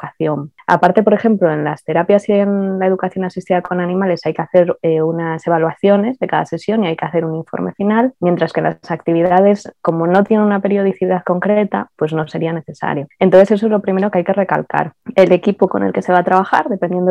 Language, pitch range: Spanish, 165-185 Hz